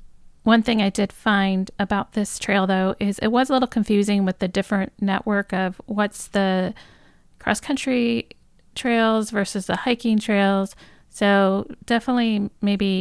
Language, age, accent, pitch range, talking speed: English, 40-59, American, 180-205 Hz, 145 wpm